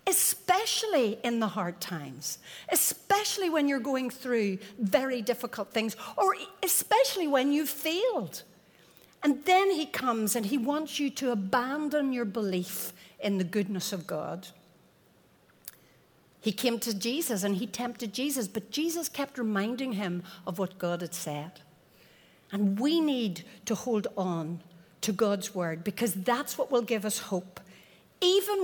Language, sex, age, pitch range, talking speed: English, female, 60-79, 220-320 Hz, 145 wpm